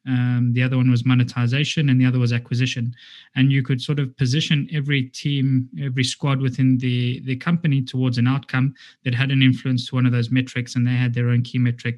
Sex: male